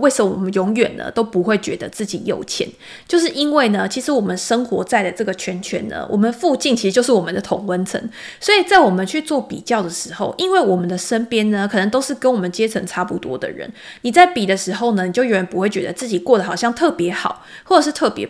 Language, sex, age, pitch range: Chinese, female, 20-39, 185-250 Hz